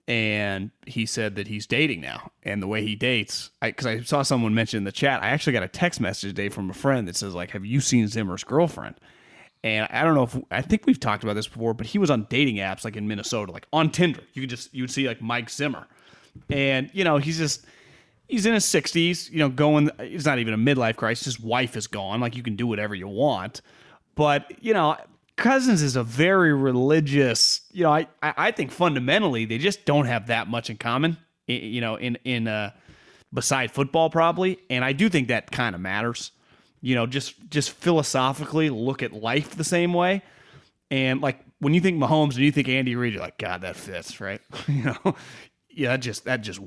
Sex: male